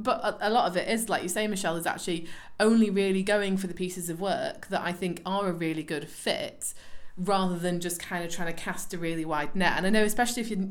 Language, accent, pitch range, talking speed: English, British, 165-195 Hz, 260 wpm